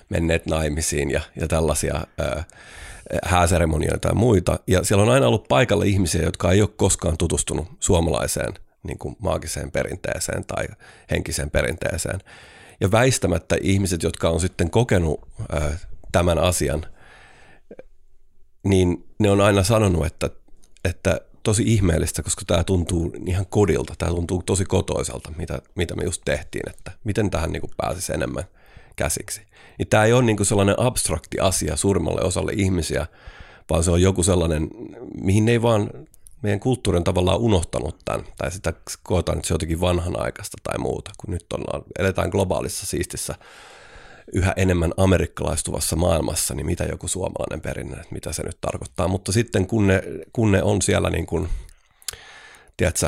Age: 30-49